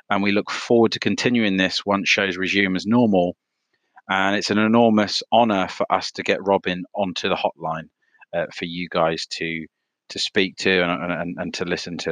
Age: 30-49